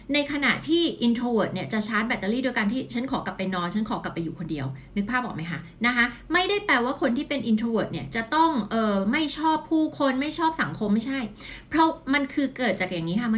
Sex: female